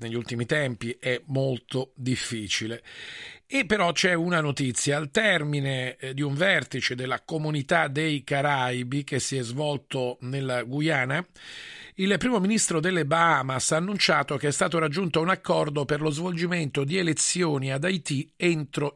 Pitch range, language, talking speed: 130-170 Hz, Italian, 150 wpm